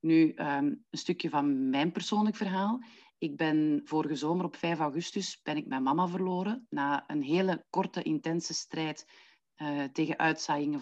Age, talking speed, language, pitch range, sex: 40-59, 150 wpm, English, 155-215 Hz, female